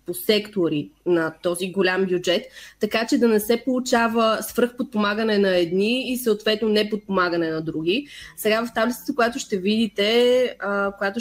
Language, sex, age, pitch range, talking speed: Bulgarian, female, 20-39, 195-230 Hz, 145 wpm